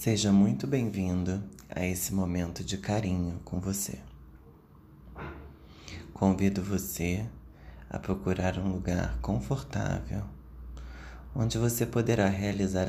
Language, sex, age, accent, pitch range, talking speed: Portuguese, male, 20-39, Brazilian, 70-100 Hz, 100 wpm